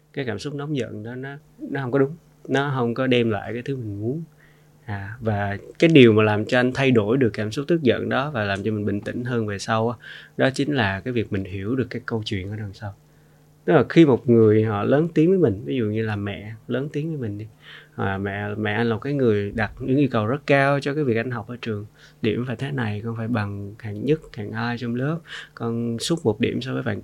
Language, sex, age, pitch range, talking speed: Vietnamese, male, 20-39, 110-140 Hz, 270 wpm